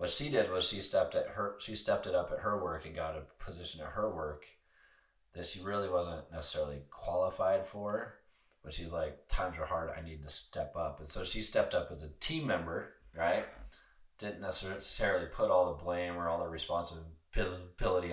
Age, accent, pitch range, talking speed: 30-49, American, 75-90 Hz, 190 wpm